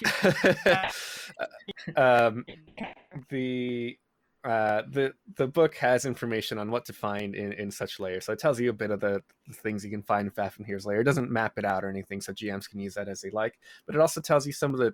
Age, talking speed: 20-39, 220 wpm